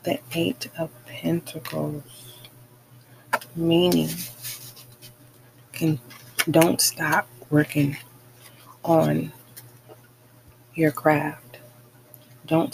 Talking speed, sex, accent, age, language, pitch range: 60 wpm, female, American, 30-49, English, 120-155 Hz